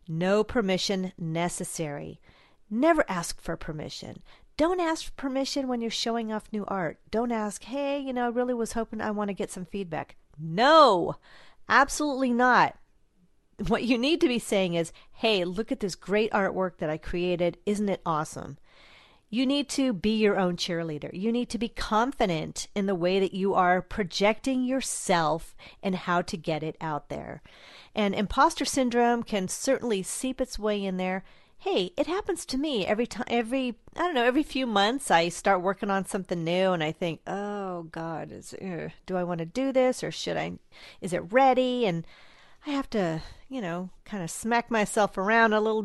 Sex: female